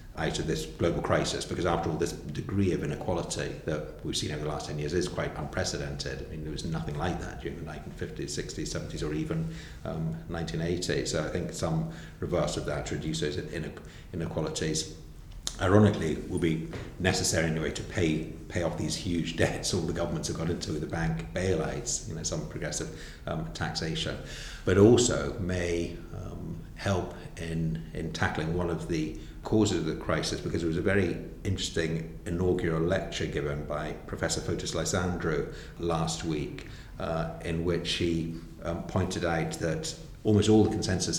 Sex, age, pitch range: male, 50-69, 80-90 Hz